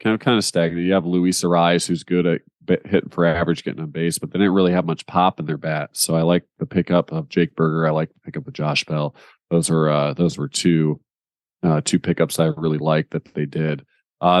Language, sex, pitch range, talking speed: English, male, 80-90 Hz, 240 wpm